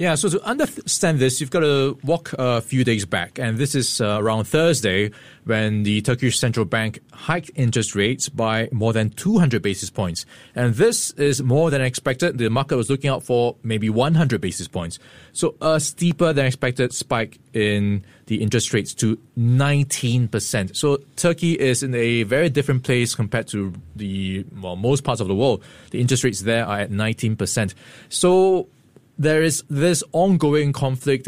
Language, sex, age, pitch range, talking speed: English, male, 20-39, 110-145 Hz, 175 wpm